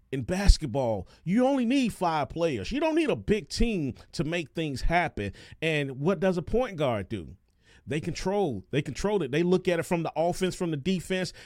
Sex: male